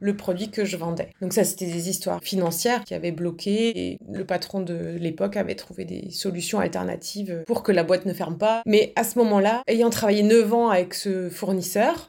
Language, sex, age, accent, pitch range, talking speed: French, female, 30-49, French, 175-230 Hz, 210 wpm